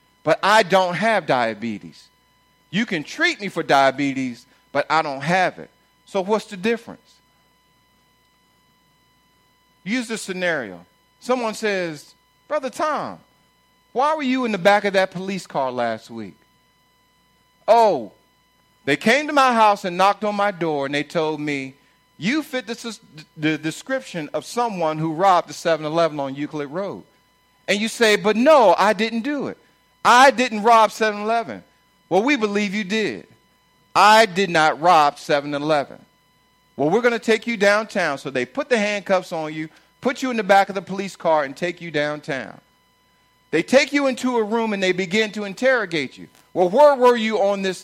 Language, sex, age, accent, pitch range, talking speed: English, male, 40-59, American, 155-225 Hz, 170 wpm